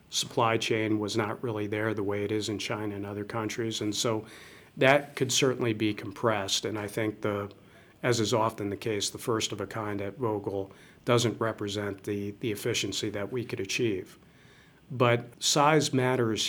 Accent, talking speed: American, 180 wpm